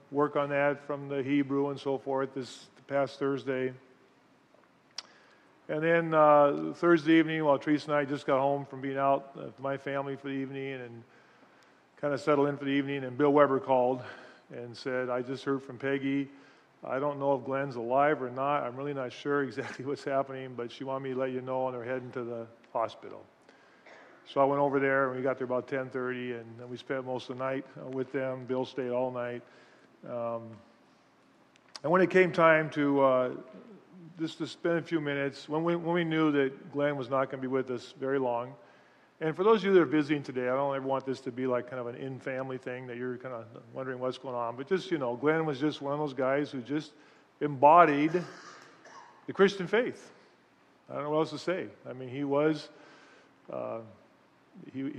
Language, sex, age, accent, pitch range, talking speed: English, male, 40-59, American, 130-145 Hz, 215 wpm